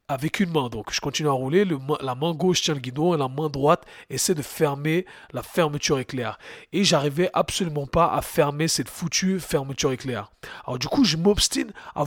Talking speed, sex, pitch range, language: 210 wpm, male, 140-185 Hz, French